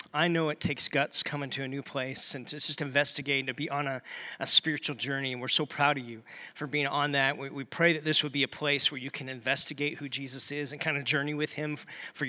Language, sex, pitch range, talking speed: English, male, 145-185 Hz, 275 wpm